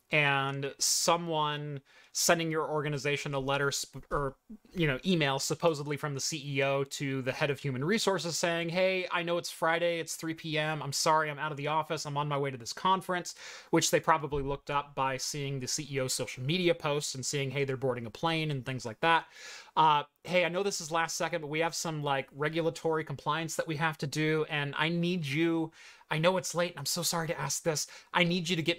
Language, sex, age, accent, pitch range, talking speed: English, male, 30-49, American, 140-165 Hz, 225 wpm